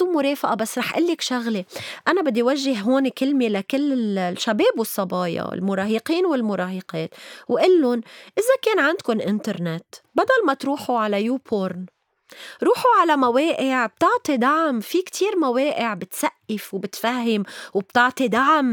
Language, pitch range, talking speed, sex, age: Arabic, 210-295 Hz, 125 wpm, female, 20-39